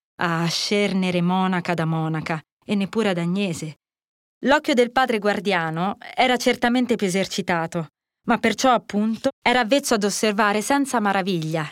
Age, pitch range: 20-39, 180-245 Hz